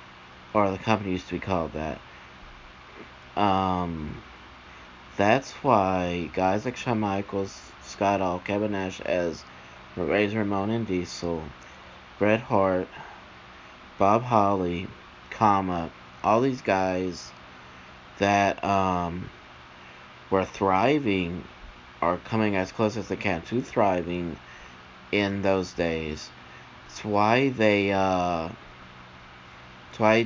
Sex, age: male, 30-49